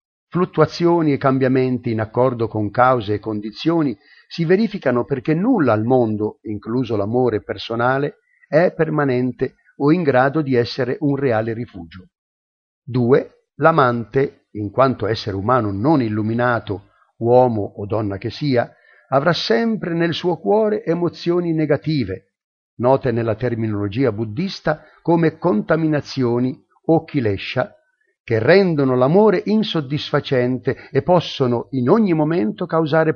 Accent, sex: native, male